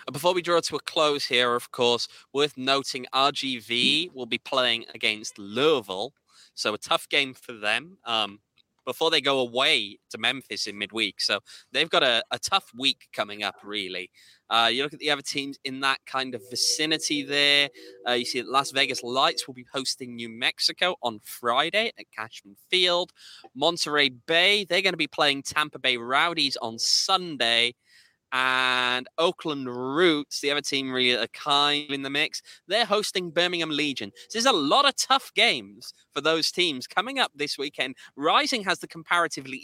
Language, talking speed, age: English, 175 wpm, 20-39